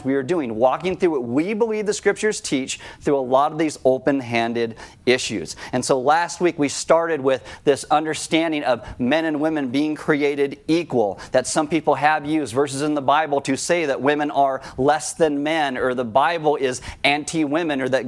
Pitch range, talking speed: 135-170 Hz, 195 wpm